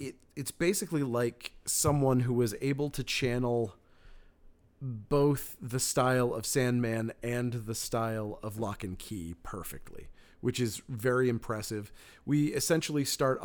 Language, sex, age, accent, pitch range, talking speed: English, male, 30-49, American, 110-135 Hz, 130 wpm